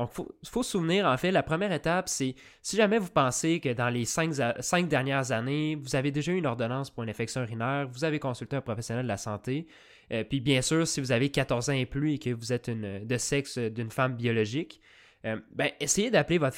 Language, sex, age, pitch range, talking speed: French, male, 20-39, 115-145 Hz, 235 wpm